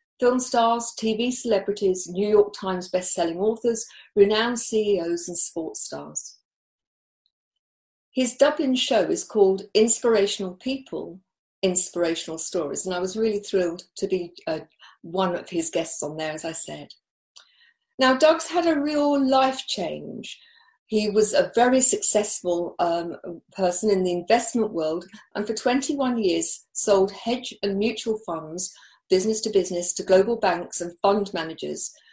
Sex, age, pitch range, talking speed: female, 50-69, 185-240 Hz, 145 wpm